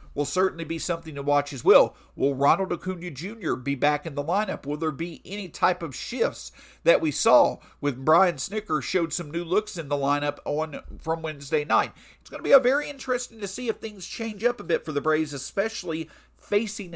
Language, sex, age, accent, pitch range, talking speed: English, male, 50-69, American, 145-200 Hz, 215 wpm